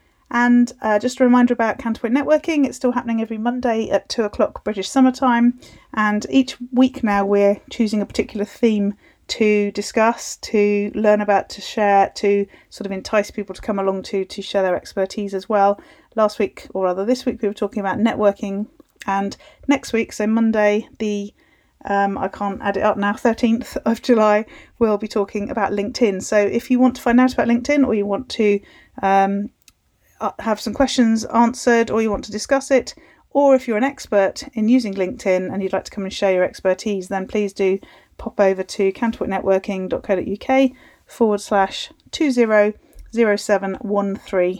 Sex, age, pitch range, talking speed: female, 40-59, 195-235 Hz, 185 wpm